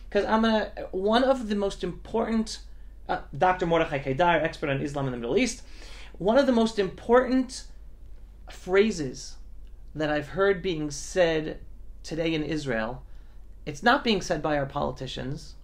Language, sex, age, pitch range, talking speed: English, male, 30-49, 145-195 Hz, 155 wpm